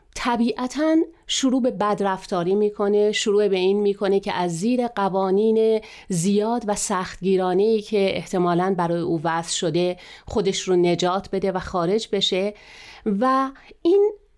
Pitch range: 185-245 Hz